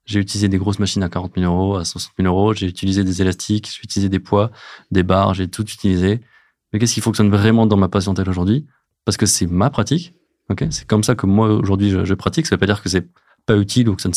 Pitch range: 95-110 Hz